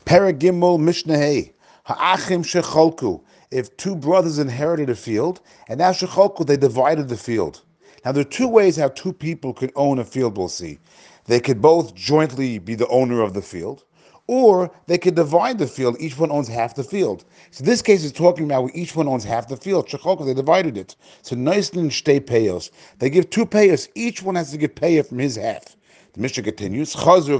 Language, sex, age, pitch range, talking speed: English, male, 40-59, 130-175 Hz, 200 wpm